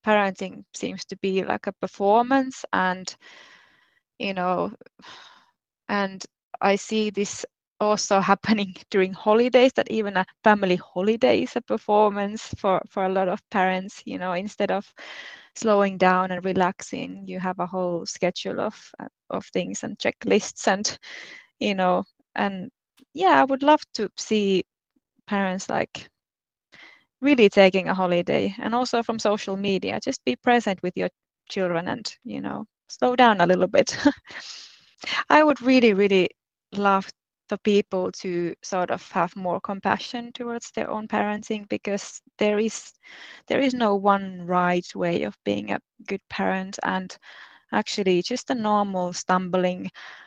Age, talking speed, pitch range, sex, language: 20-39, 145 wpm, 185-225 Hz, female, Finnish